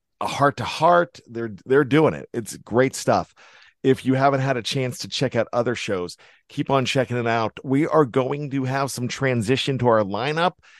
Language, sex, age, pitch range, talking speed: English, male, 50-69, 110-135 Hz, 205 wpm